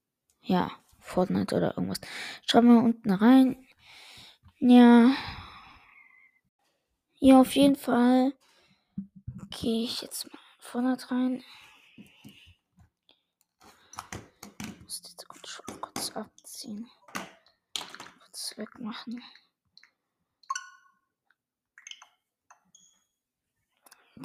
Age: 20-39